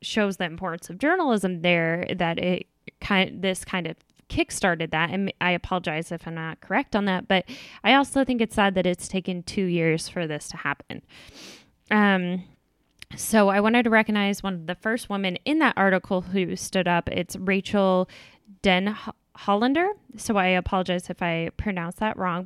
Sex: female